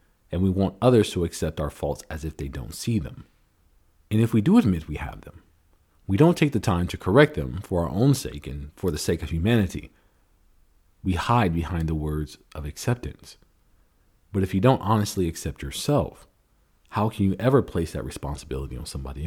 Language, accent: English, American